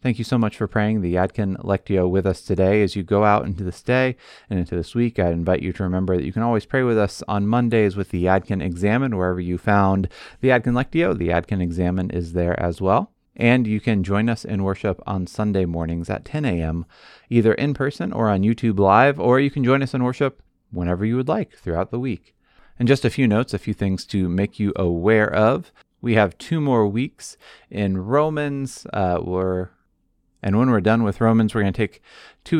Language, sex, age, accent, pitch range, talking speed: English, male, 30-49, American, 90-115 Hz, 220 wpm